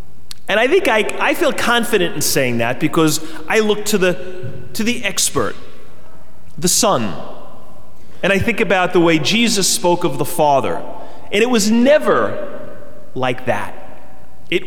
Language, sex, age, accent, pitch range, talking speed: English, male, 30-49, American, 155-230 Hz, 155 wpm